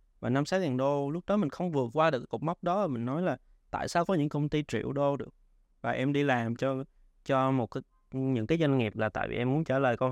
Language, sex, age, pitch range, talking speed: Vietnamese, male, 20-39, 120-160 Hz, 285 wpm